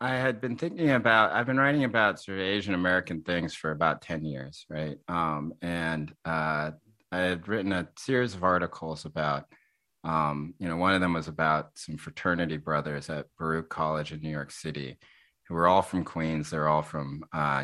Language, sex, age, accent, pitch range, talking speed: English, male, 30-49, American, 75-95 Hz, 195 wpm